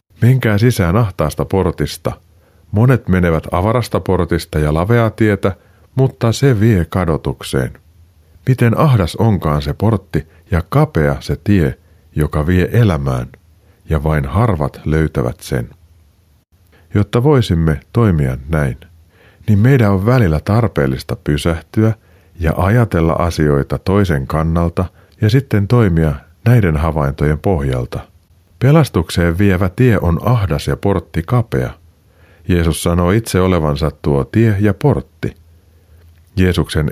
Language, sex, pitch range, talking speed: Finnish, male, 80-105 Hz, 115 wpm